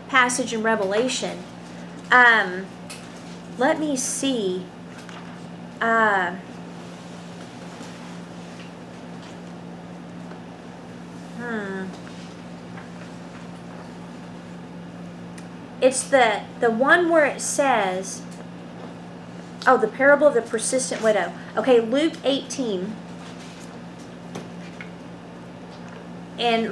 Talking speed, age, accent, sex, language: 60 wpm, 30-49, American, female, English